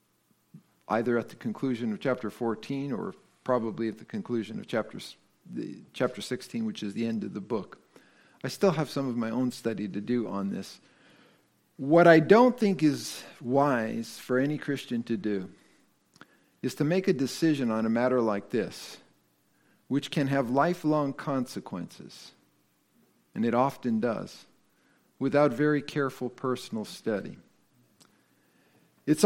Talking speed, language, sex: 145 wpm, English, male